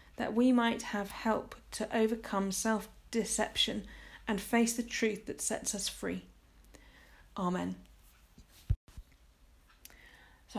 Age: 40-59